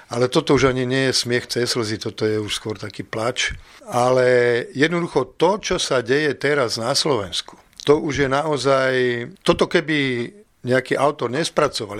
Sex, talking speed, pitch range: male, 165 wpm, 115-135 Hz